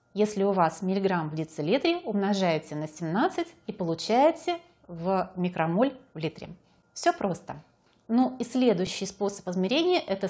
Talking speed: 135 wpm